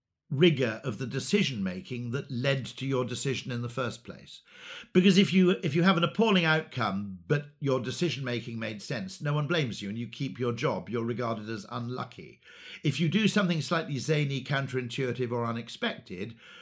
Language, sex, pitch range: English, male, 120-175 Hz